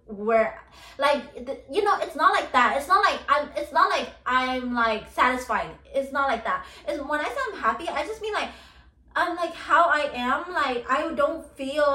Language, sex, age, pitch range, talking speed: English, female, 20-39, 240-305 Hz, 200 wpm